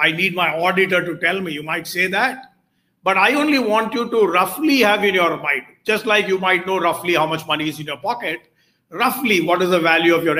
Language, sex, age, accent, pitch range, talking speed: Tamil, male, 50-69, native, 165-210 Hz, 240 wpm